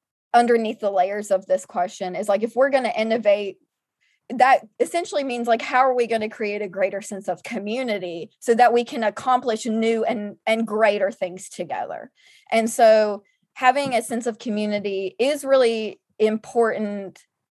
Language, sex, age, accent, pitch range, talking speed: English, female, 20-39, American, 210-250 Hz, 165 wpm